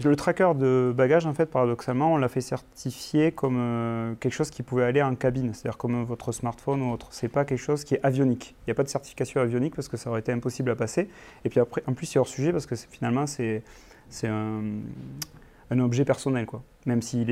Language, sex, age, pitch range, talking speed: French, male, 30-49, 120-140 Hz, 220 wpm